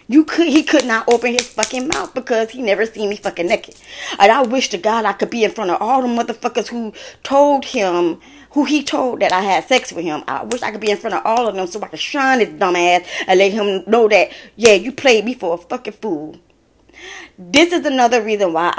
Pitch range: 180-250 Hz